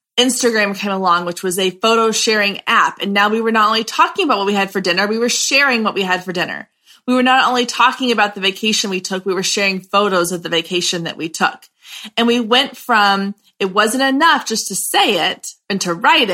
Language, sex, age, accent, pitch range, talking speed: English, female, 30-49, American, 195-235 Hz, 235 wpm